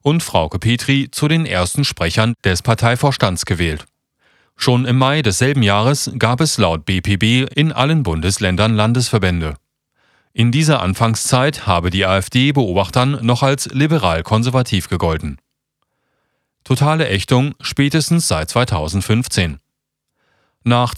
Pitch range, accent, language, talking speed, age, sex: 100-135 Hz, German, German, 115 wpm, 40-59, male